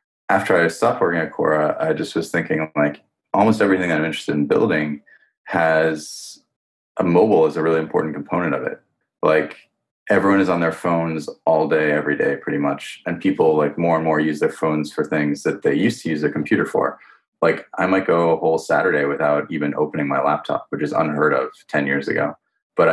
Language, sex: English, male